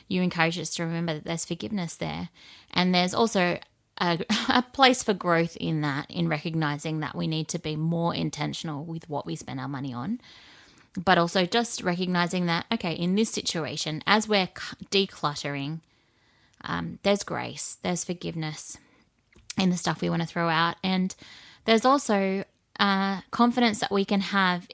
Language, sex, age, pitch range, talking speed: English, female, 20-39, 165-200 Hz, 165 wpm